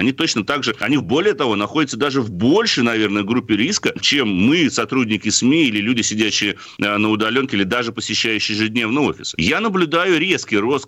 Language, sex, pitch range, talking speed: Russian, male, 120-180 Hz, 175 wpm